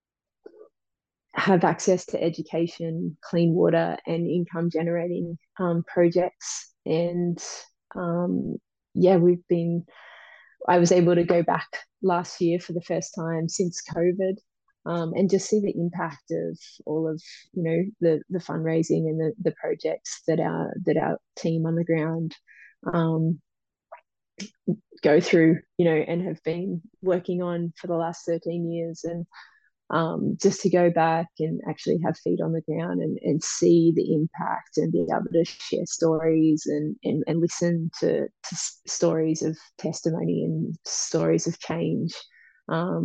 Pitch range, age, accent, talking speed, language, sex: 160-180 Hz, 20-39, Australian, 150 wpm, English, female